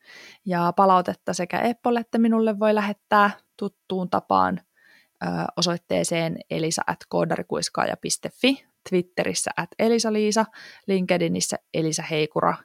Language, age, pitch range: Finnish, 20-39, 180-215 Hz